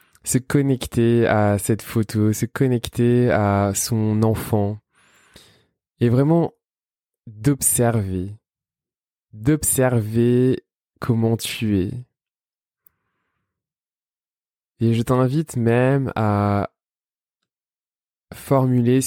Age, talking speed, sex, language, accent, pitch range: 20-39, 70 wpm, male, French, French, 105-120 Hz